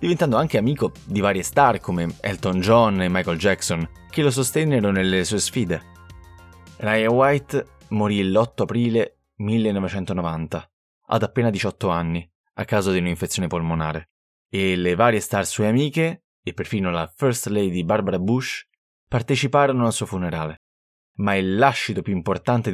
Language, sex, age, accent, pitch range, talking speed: Italian, male, 20-39, native, 90-125 Hz, 145 wpm